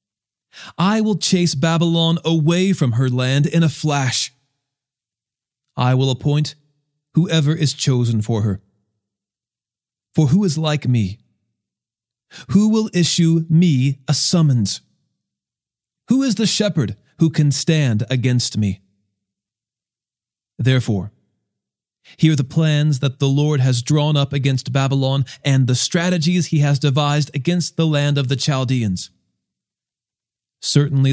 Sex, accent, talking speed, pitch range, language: male, American, 125 wpm, 120-160 Hz, English